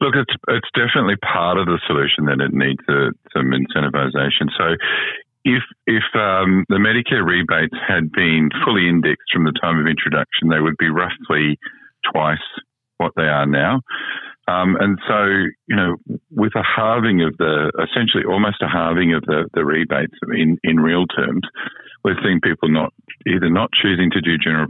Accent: Australian